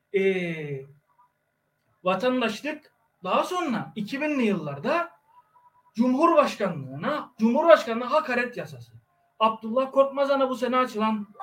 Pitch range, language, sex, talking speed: 195-285 Hz, Turkish, male, 80 wpm